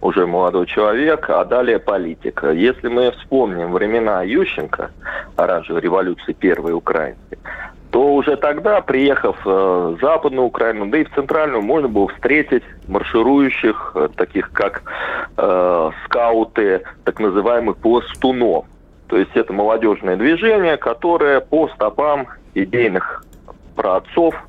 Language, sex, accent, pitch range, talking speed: Russian, male, native, 105-175 Hz, 115 wpm